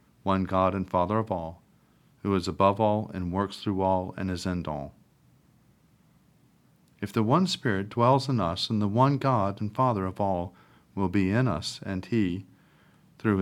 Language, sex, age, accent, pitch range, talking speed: English, male, 40-59, American, 95-115 Hz, 180 wpm